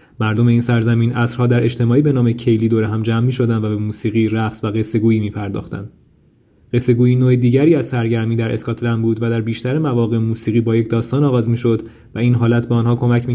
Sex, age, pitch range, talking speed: male, 20-39, 110-120 Hz, 215 wpm